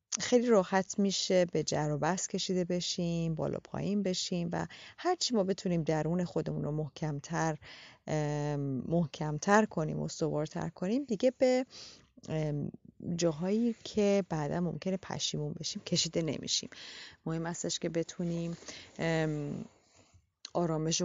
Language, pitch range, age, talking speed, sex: Persian, 160-200 Hz, 30-49, 110 wpm, female